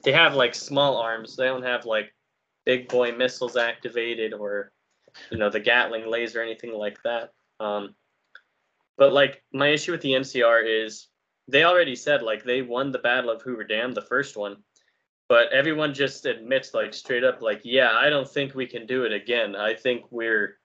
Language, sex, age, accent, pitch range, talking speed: English, male, 10-29, American, 110-135 Hz, 190 wpm